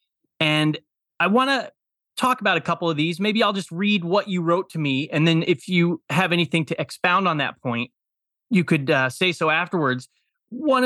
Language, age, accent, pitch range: English, 30-49, American, 135-175 Hz